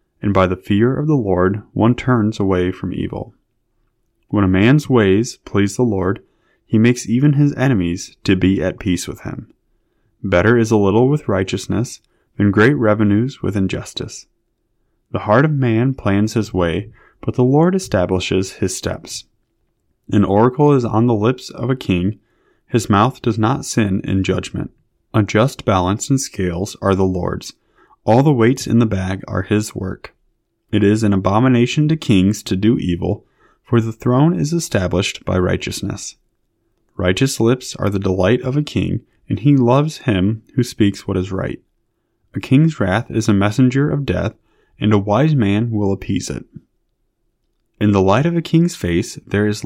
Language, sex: English, male